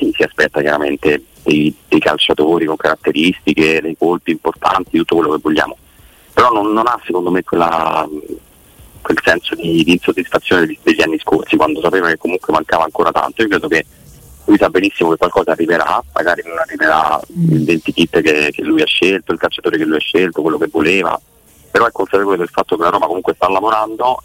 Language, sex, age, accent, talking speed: Italian, male, 30-49, native, 195 wpm